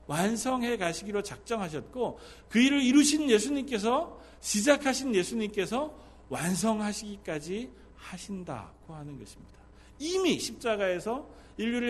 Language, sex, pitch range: Korean, male, 155-240 Hz